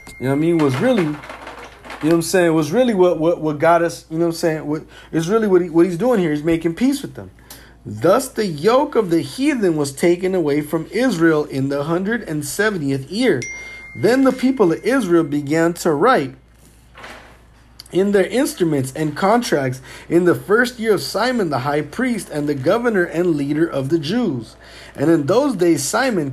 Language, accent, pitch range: English, American, 150-210 Hz